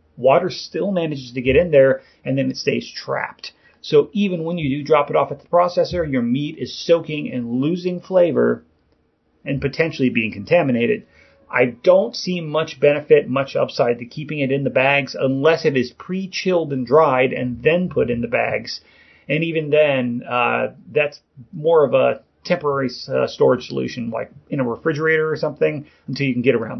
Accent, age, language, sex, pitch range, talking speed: American, 30-49, English, male, 135-185 Hz, 185 wpm